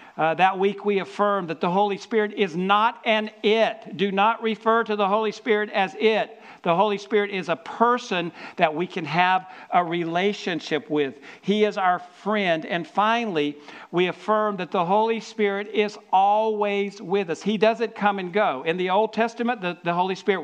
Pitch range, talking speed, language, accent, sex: 180-220 Hz, 190 wpm, English, American, male